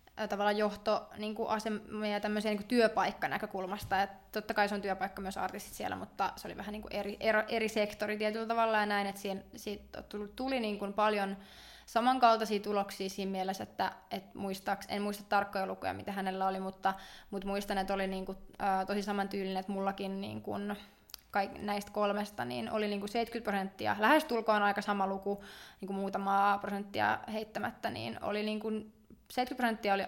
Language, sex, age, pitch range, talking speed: Finnish, female, 20-39, 195-215 Hz, 165 wpm